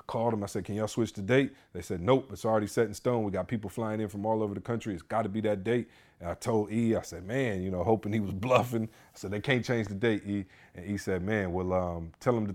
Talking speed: 295 wpm